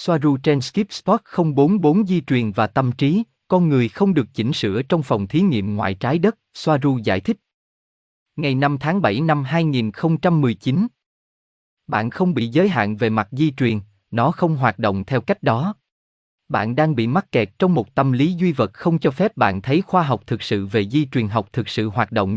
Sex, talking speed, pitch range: male, 205 wpm, 110-170 Hz